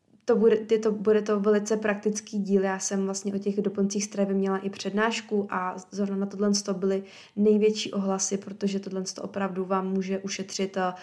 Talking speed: 175 wpm